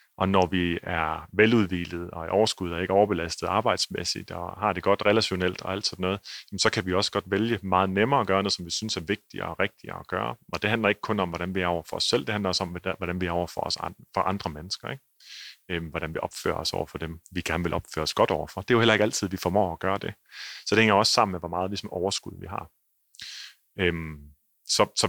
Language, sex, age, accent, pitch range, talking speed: Danish, male, 30-49, native, 90-105 Hz, 250 wpm